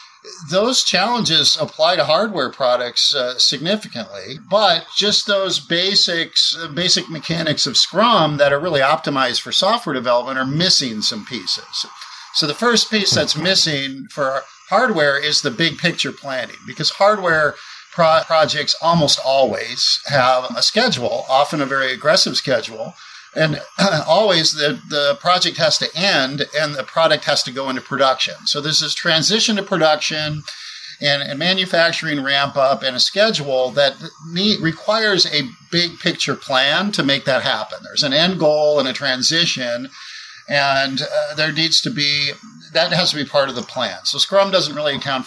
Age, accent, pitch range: 50-69, American, 140-185 Hz